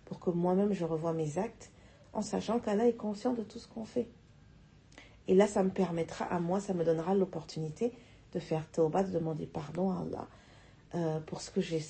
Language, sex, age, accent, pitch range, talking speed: French, female, 40-59, French, 165-220 Hz, 185 wpm